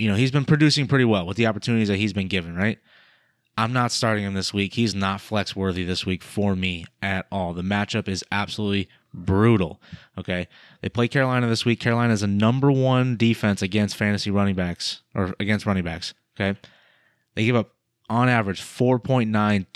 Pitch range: 100-120 Hz